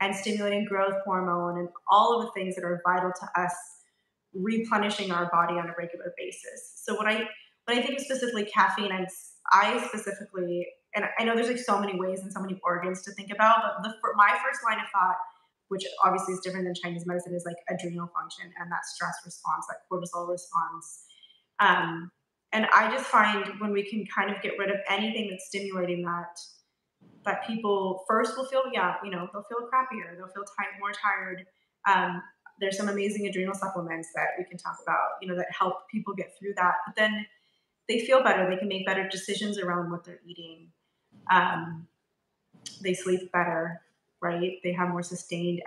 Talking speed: 195 wpm